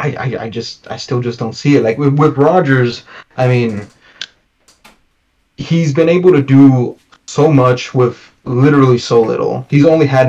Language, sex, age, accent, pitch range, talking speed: English, male, 20-39, American, 115-140 Hz, 175 wpm